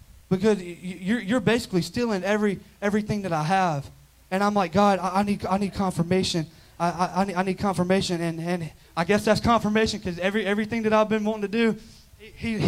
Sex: male